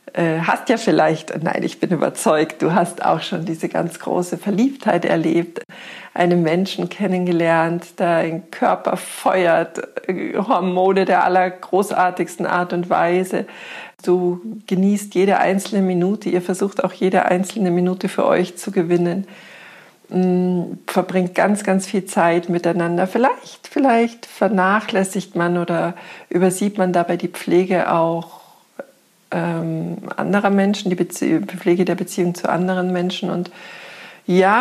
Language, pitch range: German, 175-200 Hz